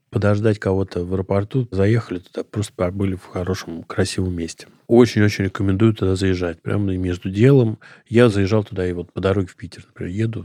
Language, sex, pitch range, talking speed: Russian, male, 95-110 Hz, 170 wpm